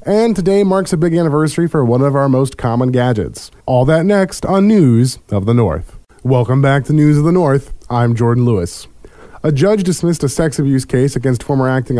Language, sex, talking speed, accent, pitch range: English, male, 205 wpm, American, 115-140 Hz